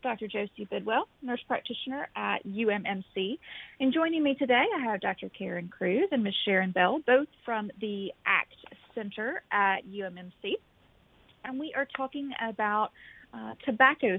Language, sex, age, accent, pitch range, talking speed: English, female, 30-49, American, 190-265 Hz, 145 wpm